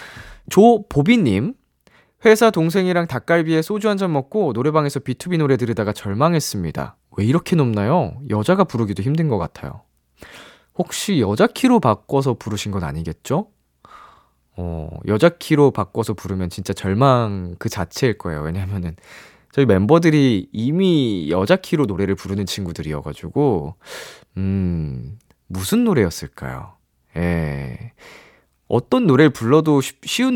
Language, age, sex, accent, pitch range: Korean, 20-39, male, native, 90-150 Hz